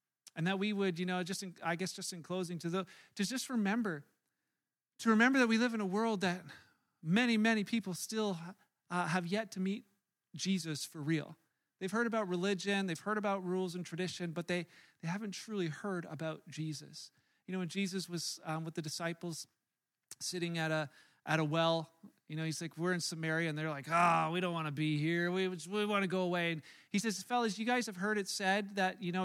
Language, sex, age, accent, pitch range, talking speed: English, male, 40-59, American, 170-200 Hz, 225 wpm